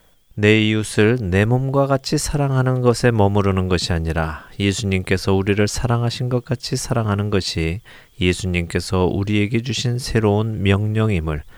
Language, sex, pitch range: Korean, male, 85-110 Hz